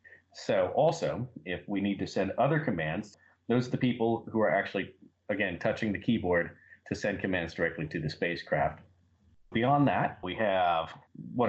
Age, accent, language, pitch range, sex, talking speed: 40-59, American, English, 95-120 Hz, male, 165 wpm